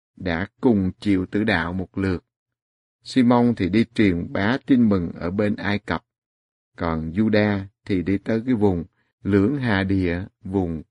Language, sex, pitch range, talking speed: Vietnamese, male, 90-115 Hz, 160 wpm